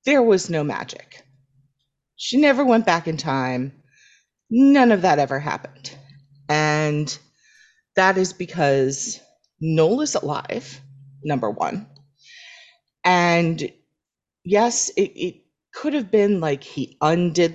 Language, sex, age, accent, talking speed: English, female, 30-49, American, 115 wpm